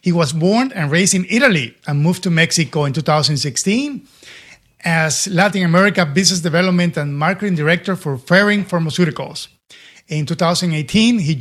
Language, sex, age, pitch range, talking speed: English, male, 50-69, 155-195 Hz, 140 wpm